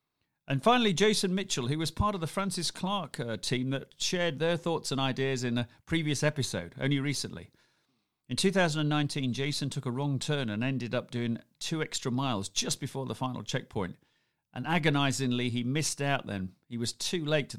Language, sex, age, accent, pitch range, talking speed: English, male, 40-59, British, 110-150 Hz, 190 wpm